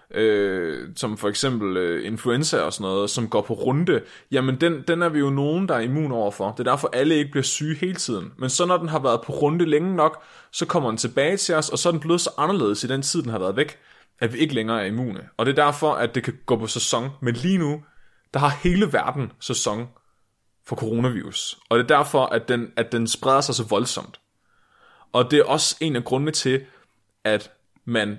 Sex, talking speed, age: male, 230 wpm, 20-39